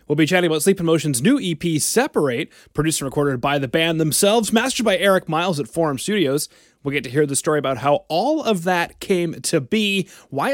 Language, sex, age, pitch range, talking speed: English, male, 30-49, 145-195 Hz, 220 wpm